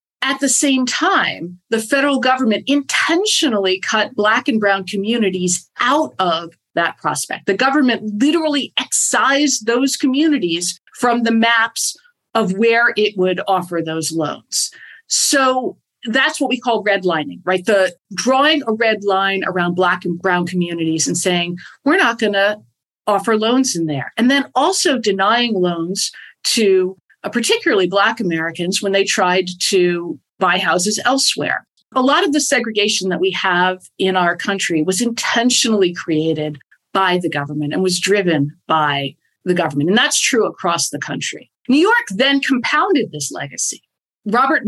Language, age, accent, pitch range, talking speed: English, 50-69, American, 180-240 Hz, 150 wpm